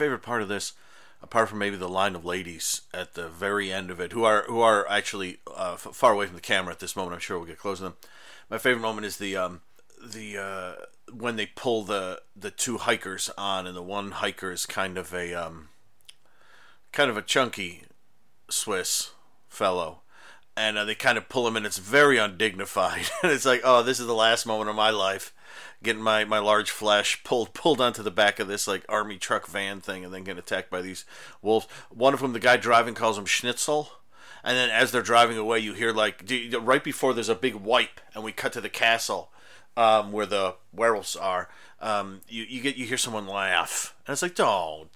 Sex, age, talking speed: male, 40-59, 220 wpm